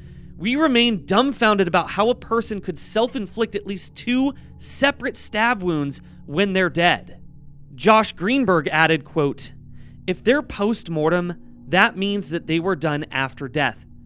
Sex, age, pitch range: male, 30-49, 150-210 Hz